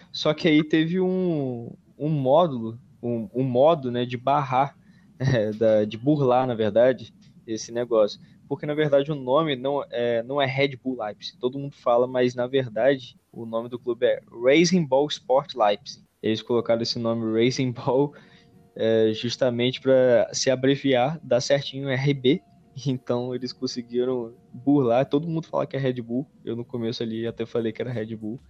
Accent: Brazilian